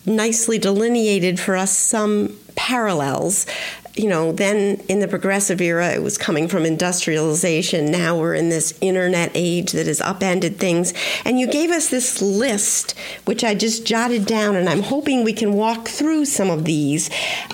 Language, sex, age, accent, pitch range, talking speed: English, female, 50-69, American, 185-255 Hz, 170 wpm